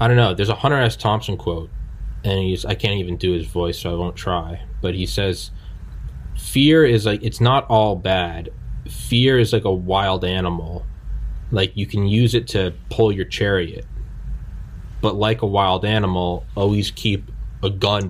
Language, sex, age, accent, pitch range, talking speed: English, male, 20-39, American, 90-105 Hz, 180 wpm